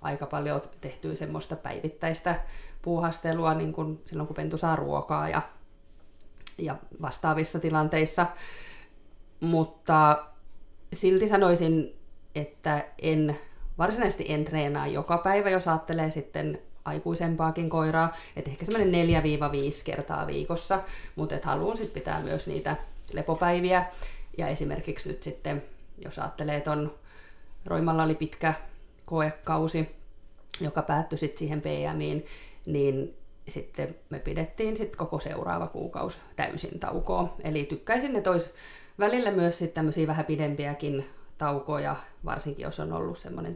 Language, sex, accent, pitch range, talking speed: Finnish, female, native, 145-175 Hz, 120 wpm